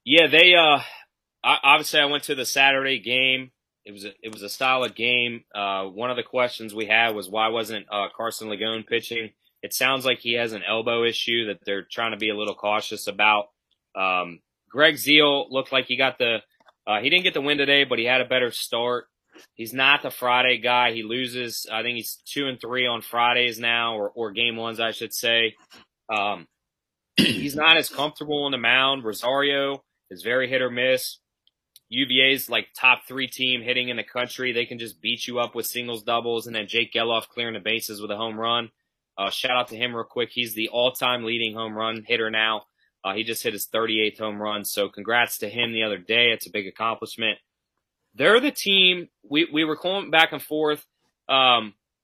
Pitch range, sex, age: 110-130 Hz, male, 20-39